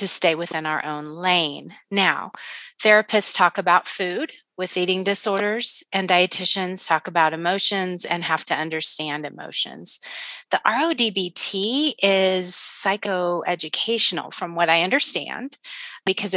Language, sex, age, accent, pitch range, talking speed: English, female, 30-49, American, 175-210 Hz, 120 wpm